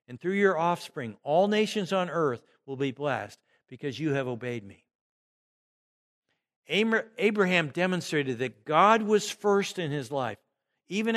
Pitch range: 130-180 Hz